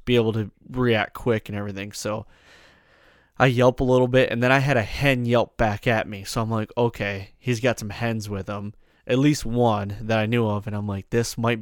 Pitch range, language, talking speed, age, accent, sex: 105-125 Hz, English, 230 wpm, 20-39, American, male